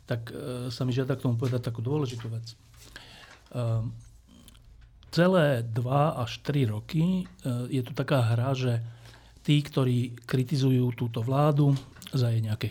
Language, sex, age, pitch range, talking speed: Slovak, male, 40-59, 115-140 Hz, 130 wpm